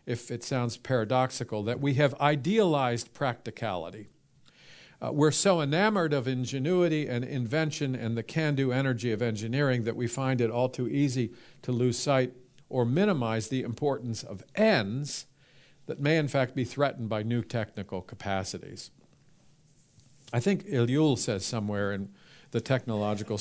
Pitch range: 110-140 Hz